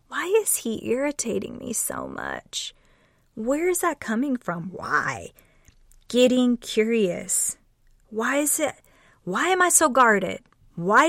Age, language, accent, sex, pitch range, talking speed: 30-49, English, American, female, 220-305 Hz, 130 wpm